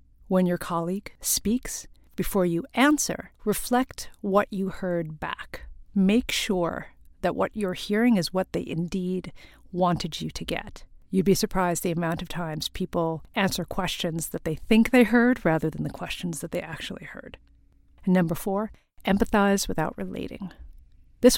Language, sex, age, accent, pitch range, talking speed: English, female, 50-69, American, 175-225 Hz, 155 wpm